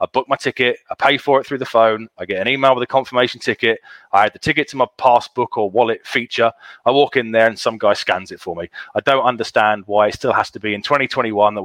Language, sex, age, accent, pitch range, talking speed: English, male, 30-49, British, 110-130 Hz, 270 wpm